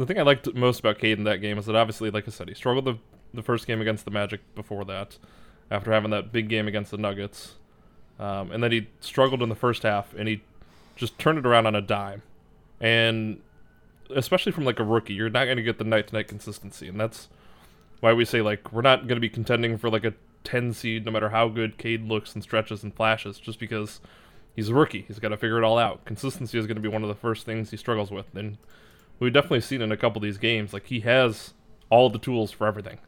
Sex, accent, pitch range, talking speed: male, American, 105-120 Hz, 250 wpm